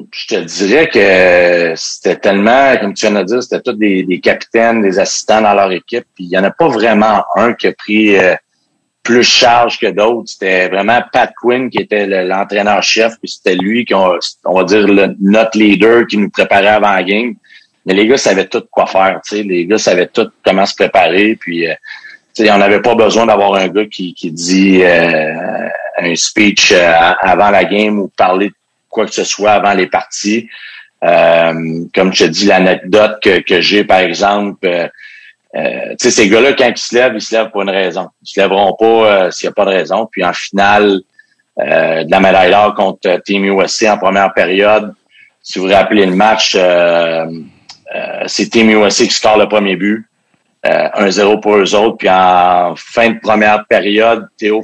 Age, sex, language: 40-59, male, French